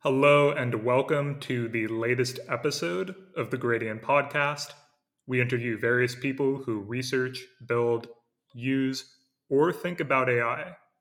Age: 30-49